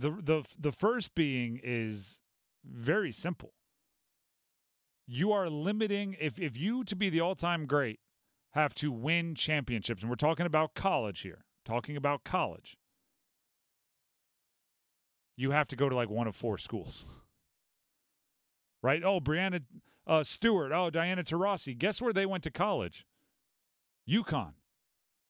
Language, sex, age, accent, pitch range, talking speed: English, male, 40-59, American, 135-195 Hz, 140 wpm